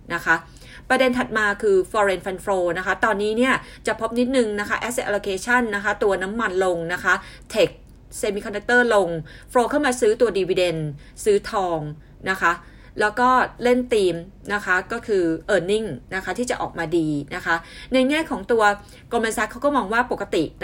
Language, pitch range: Thai, 180-240 Hz